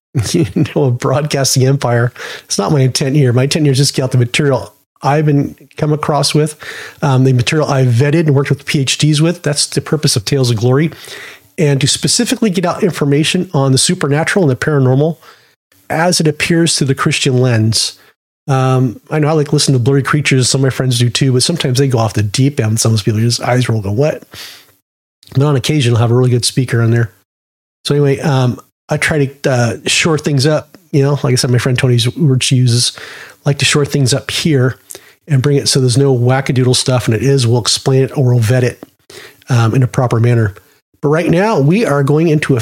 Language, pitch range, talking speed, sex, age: English, 125-150 Hz, 225 wpm, male, 30-49